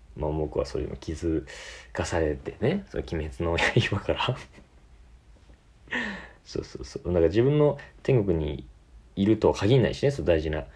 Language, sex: Japanese, male